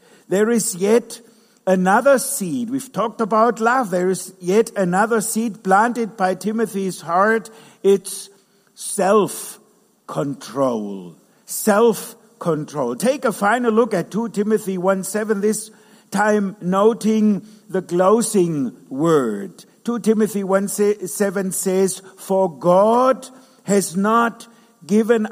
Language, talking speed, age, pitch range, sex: English, 115 wpm, 60-79, 190-235 Hz, male